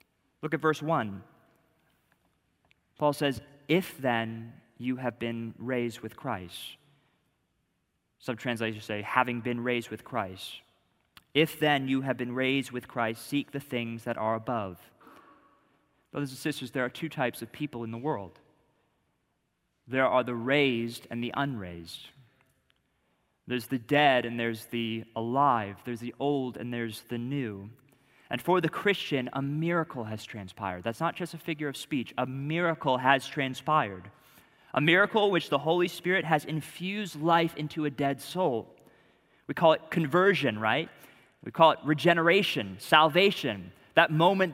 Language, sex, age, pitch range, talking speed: English, male, 20-39, 120-160 Hz, 150 wpm